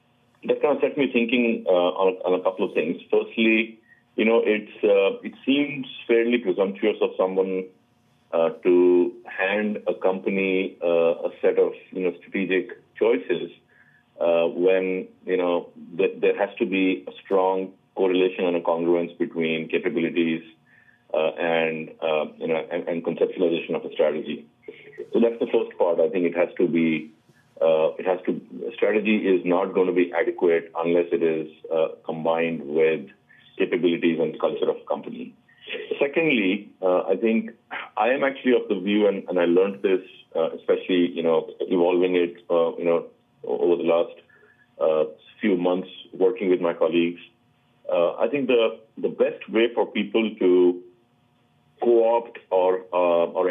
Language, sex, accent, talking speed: English, male, Indian, 165 wpm